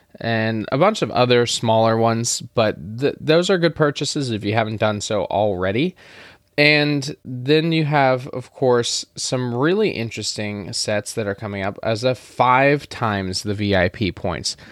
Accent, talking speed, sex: American, 160 wpm, male